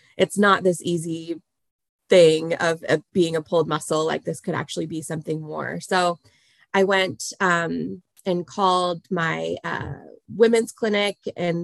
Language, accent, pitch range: English, American, 165-185 Hz